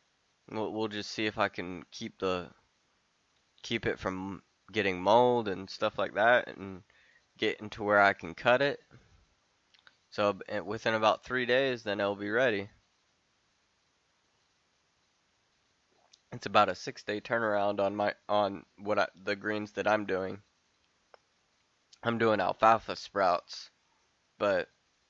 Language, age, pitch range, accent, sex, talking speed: English, 20-39, 95-110 Hz, American, male, 130 wpm